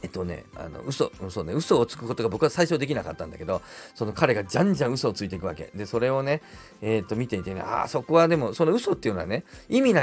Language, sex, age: Japanese, male, 40-59